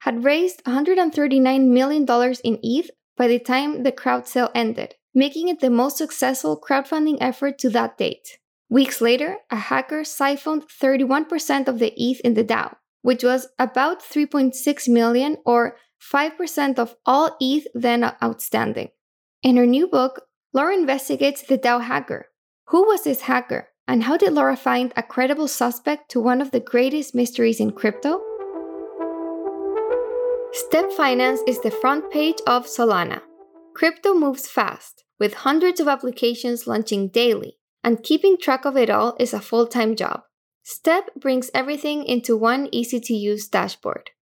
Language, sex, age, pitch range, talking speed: English, female, 10-29, 240-305 Hz, 150 wpm